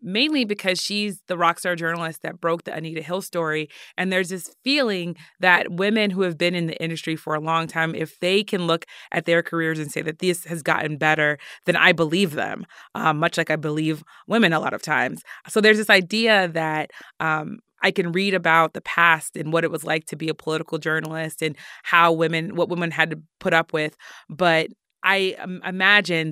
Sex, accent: female, American